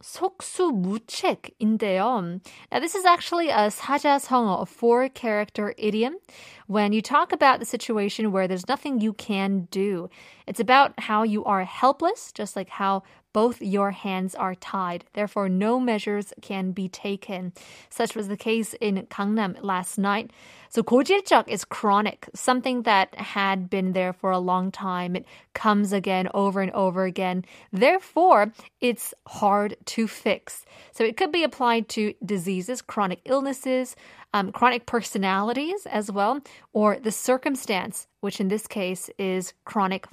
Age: 20-39